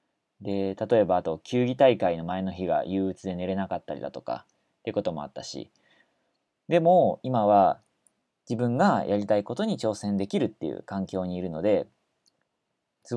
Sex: male